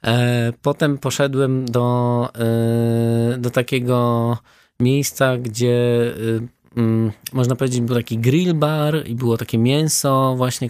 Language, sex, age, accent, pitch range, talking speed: Polish, male, 20-39, native, 120-145 Hz, 100 wpm